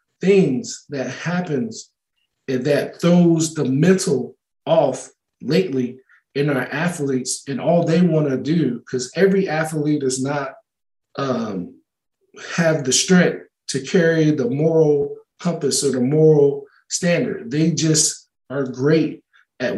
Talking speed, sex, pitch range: 125 wpm, male, 140-165 Hz